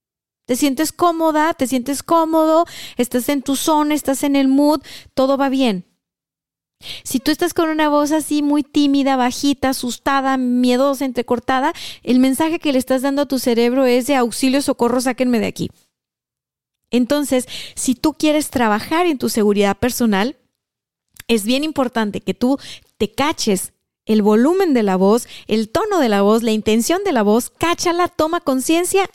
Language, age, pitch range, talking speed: Spanish, 30-49, 225-295 Hz, 165 wpm